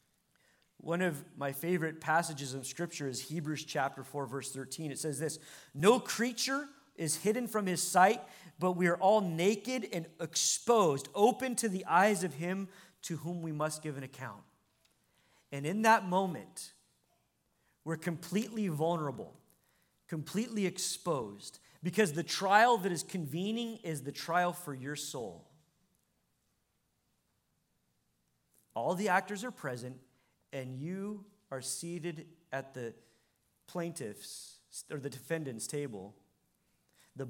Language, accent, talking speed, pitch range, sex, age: English, American, 130 wpm, 150-195 Hz, male, 40-59